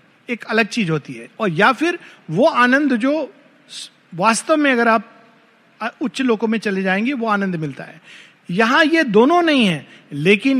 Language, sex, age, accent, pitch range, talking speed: Hindi, male, 50-69, native, 175-240 Hz, 175 wpm